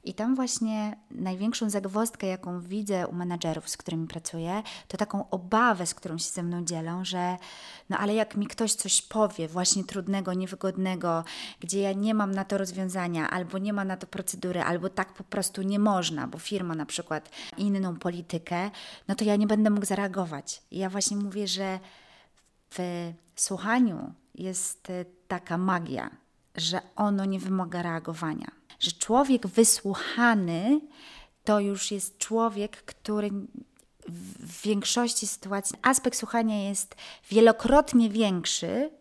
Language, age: Polish, 30-49